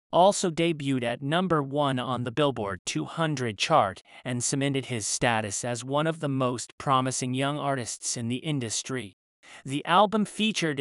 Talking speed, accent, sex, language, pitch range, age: 155 wpm, American, male, English, 125-165 Hz, 30-49